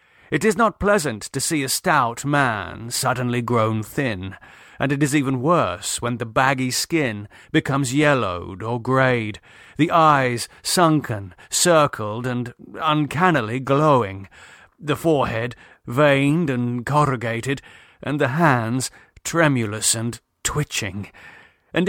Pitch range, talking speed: 120-150 Hz, 120 wpm